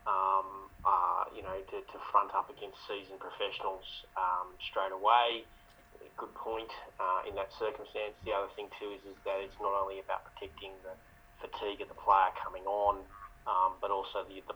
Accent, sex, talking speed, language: Australian, male, 180 wpm, English